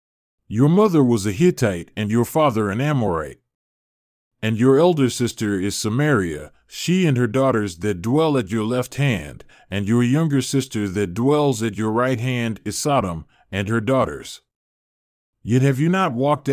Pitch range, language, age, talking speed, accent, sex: 110-140 Hz, English, 40-59, 165 wpm, American, male